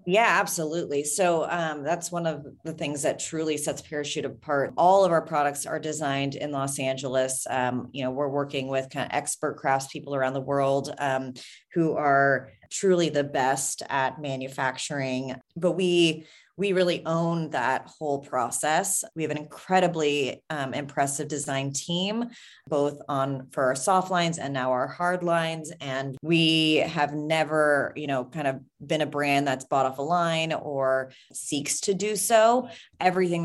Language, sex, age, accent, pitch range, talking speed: English, female, 30-49, American, 135-160 Hz, 165 wpm